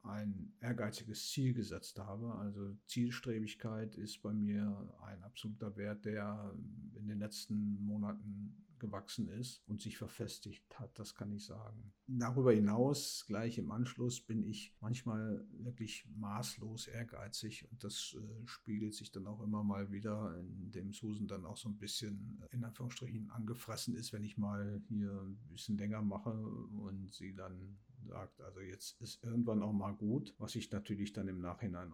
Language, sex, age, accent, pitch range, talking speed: German, male, 50-69, German, 105-120 Hz, 160 wpm